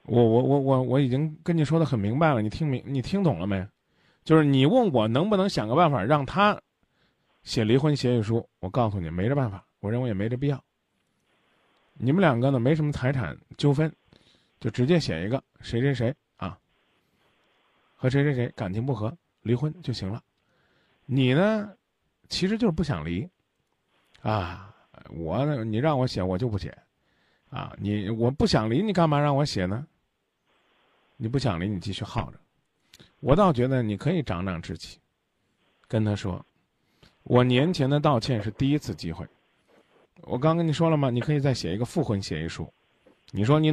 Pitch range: 105-145 Hz